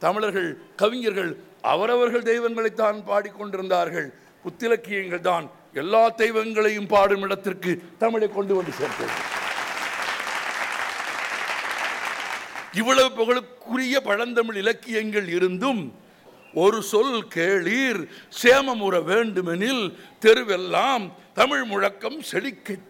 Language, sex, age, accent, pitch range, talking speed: Tamil, male, 60-79, native, 190-240 Hz, 75 wpm